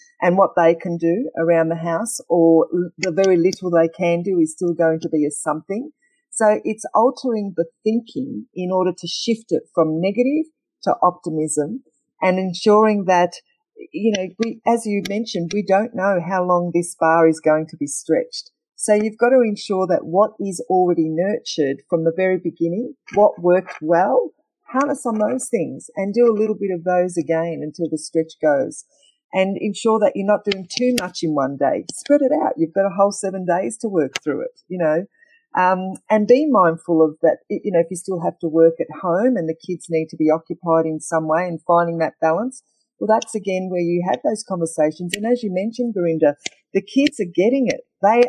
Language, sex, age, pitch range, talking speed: Punjabi, female, 50-69, 165-215 Hz, 205 wpm